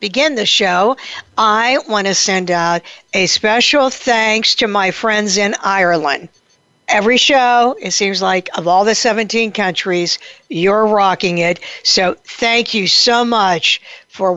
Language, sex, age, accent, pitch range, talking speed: English, female, 60-79, American, 185-235 Hz, 145 wpm